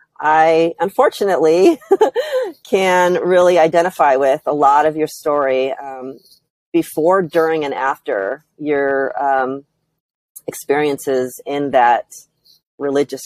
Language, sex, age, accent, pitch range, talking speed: English, female, 30-49, American, 135-165 Hz, 100 wpm